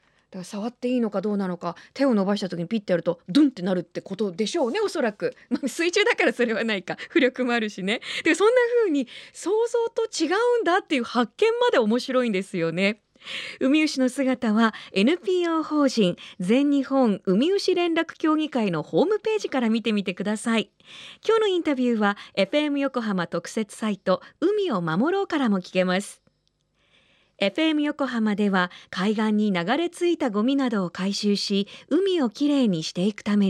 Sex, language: female, Japanese